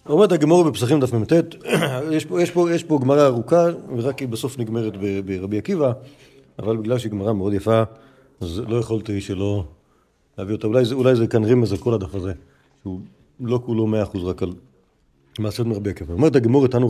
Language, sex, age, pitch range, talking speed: Hebrew, male, 40-59, 110-145 Hz, 175 wpm